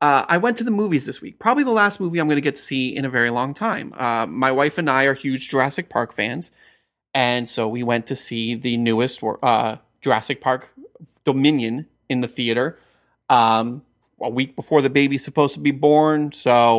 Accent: American